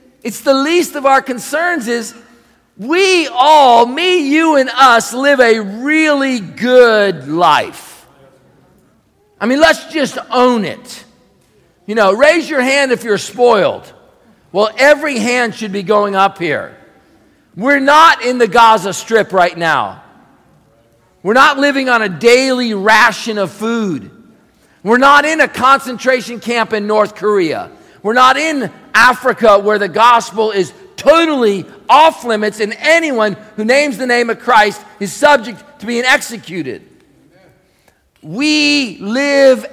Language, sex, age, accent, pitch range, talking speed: English, male, 50-69, American, 210-280 Hz, 140 wpm